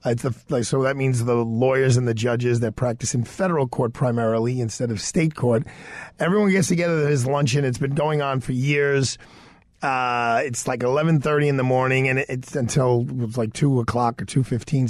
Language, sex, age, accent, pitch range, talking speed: English, male, 40-59, American, 120-150 Hz, 200 wpm